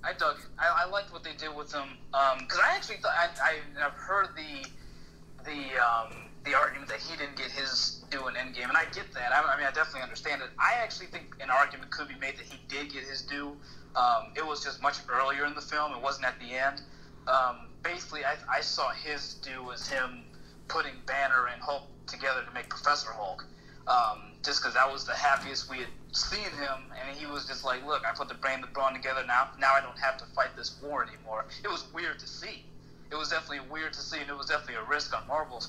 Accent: American